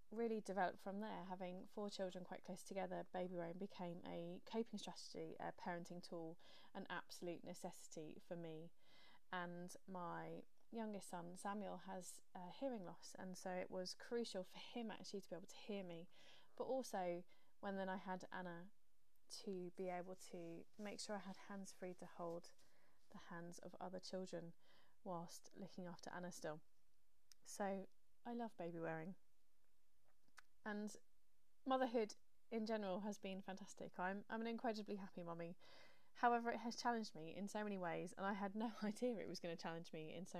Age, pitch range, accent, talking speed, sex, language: 20-39, 175-220 Hz, British, 170 wpm, female, English